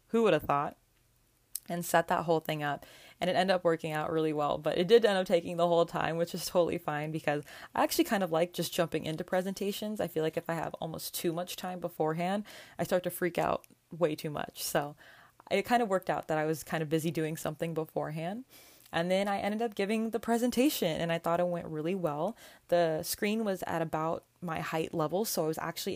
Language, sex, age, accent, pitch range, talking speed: English, female, 20-39, American, 155-180 Hz, 235 wpm